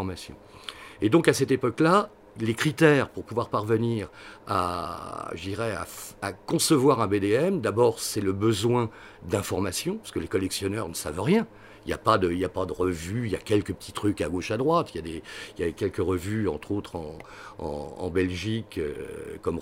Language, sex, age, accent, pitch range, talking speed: French, male, 50-69, French, 100-145 Hz, 200 wpm